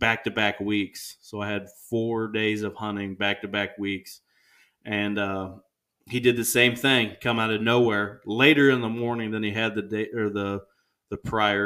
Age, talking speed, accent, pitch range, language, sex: 30-49, 180 wpm, American, 100-115 Hz, English, male